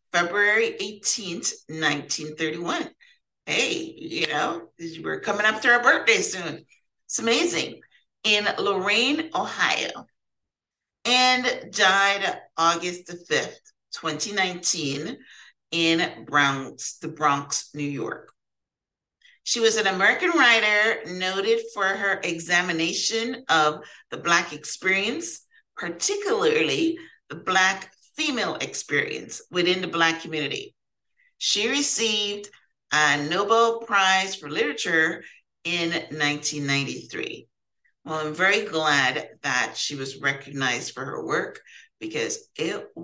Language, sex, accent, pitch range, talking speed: English, female, American, 165-235 Hz, 105 wpm